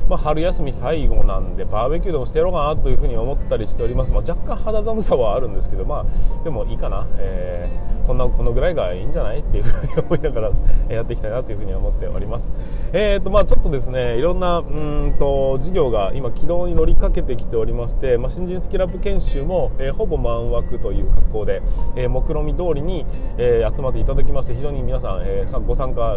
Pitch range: 115-160 Hz